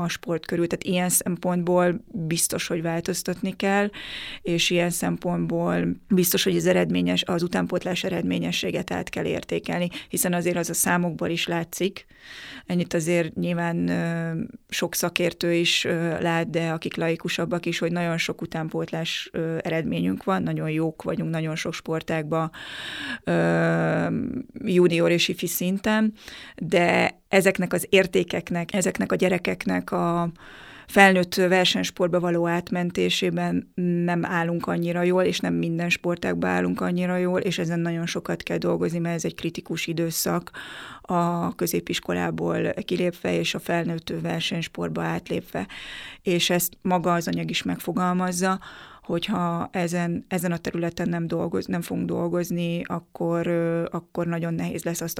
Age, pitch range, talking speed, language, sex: 30-49, 160-180 Hz, 130 wpm, Hungarian, female